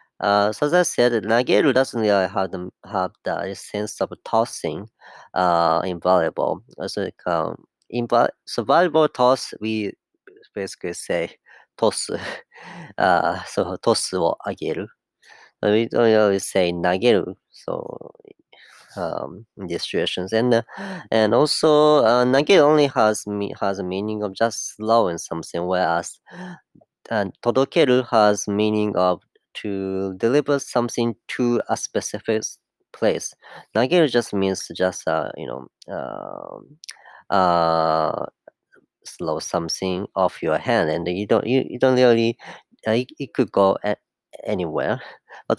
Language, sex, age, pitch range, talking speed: English, female, 30-49, 95-125 Hz, 135 wpm